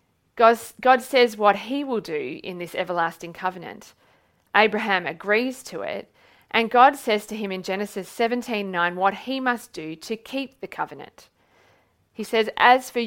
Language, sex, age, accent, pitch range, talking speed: English, female, 40-59, Australian, 190-240 Hz, 155 wpm